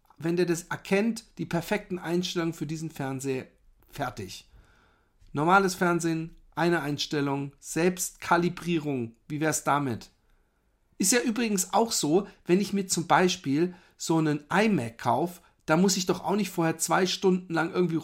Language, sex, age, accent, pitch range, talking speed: German, male, 50-69, German, 135-180 Hz, 145 wpm